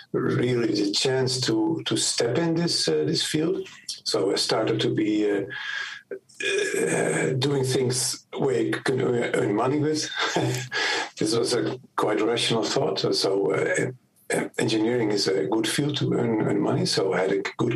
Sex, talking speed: male, 160 wpm